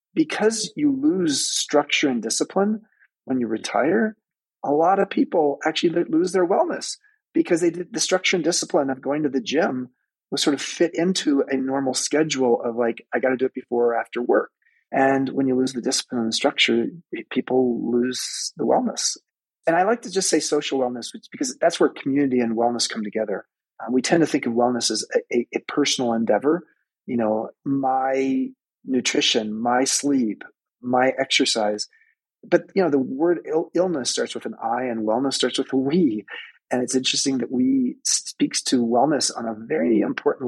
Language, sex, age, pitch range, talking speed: English, male, 30-49, 125-185 Hz, 185 wpm